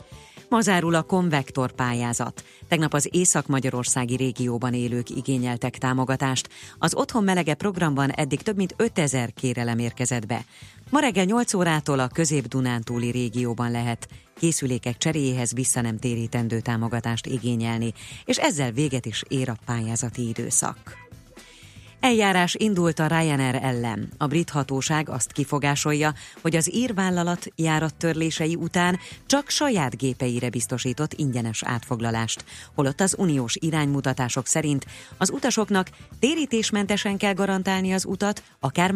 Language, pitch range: Hungarian, 120-170 Hz